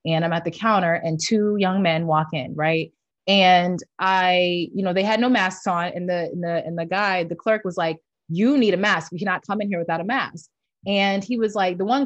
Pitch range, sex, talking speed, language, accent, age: 190-265 Hz, female, 250 wpm, English, American, 20-39